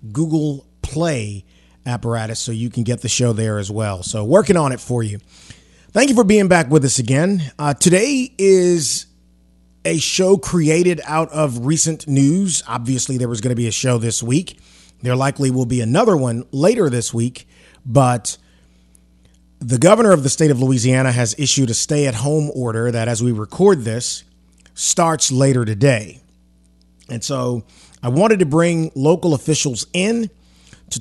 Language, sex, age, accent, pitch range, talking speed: English, male, 30-49, American, 110-150 Hz, 165 wpm